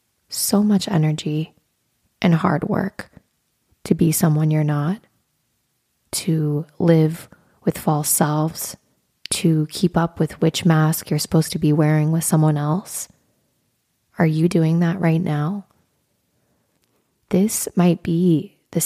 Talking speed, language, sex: 125 wpm, English, female